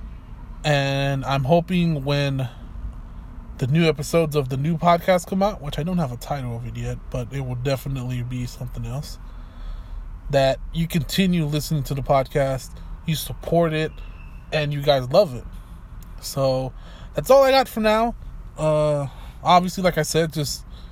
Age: 20-39